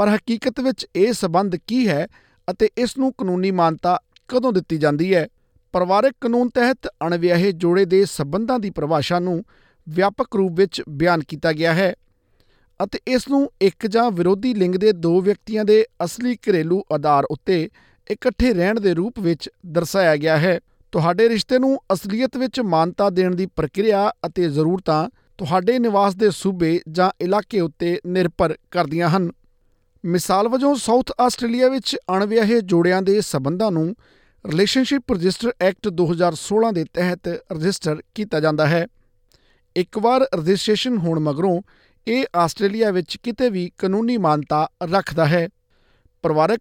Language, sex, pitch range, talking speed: Punjabi, male, 170-225 Hz, 125 wpm